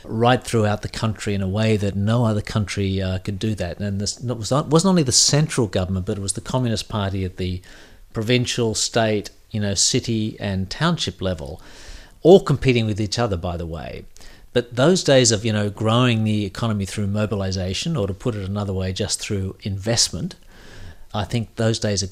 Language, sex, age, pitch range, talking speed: English, male, 50-69, 95-115 Hz, 195 wpm